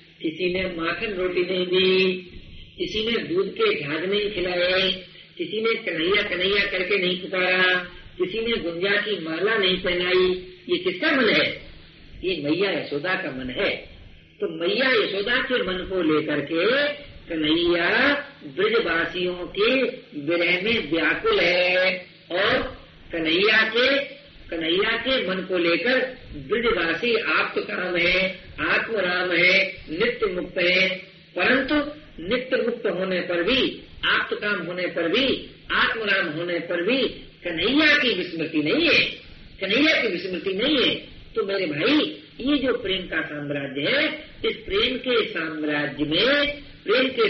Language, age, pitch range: Hindi, 50-69, 180-275 Hz